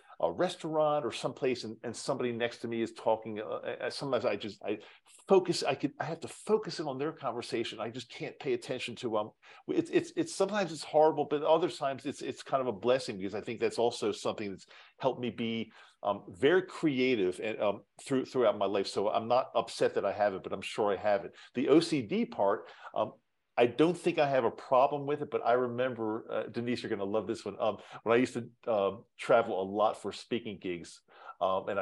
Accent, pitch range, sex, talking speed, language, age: American, 110-145 Hz, male, 230 wpm, English, 50-69